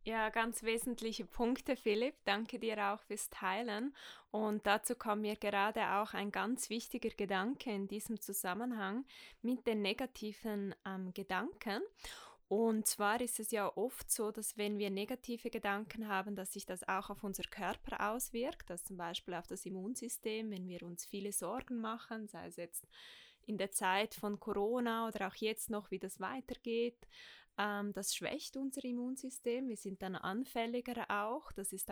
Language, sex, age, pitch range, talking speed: German, female, 20-39, 200-235 Hz, 165 wpm